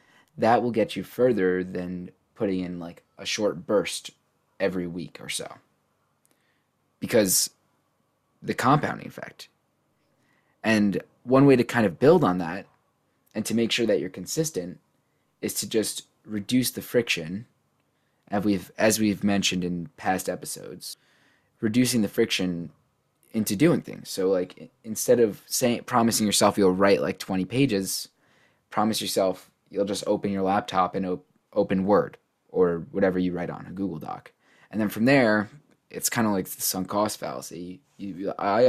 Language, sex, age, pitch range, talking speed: English, male, 20-39, 95-115 Hz, 155 wpm